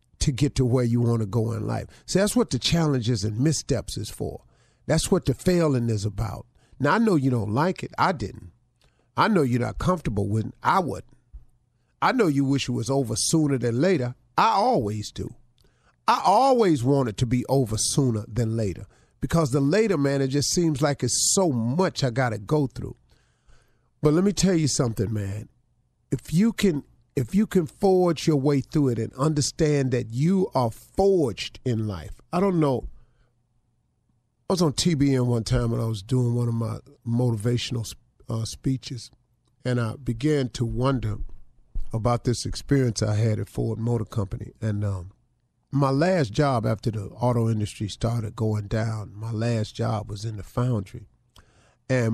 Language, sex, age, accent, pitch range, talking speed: English, male, 50-69, American, 115-140 Hz, 185 wpm